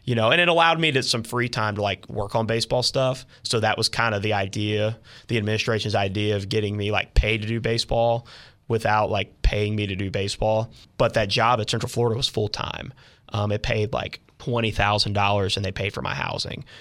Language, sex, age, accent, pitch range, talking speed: English, male, 20-39, American, 100-115 Hz, 210 wpm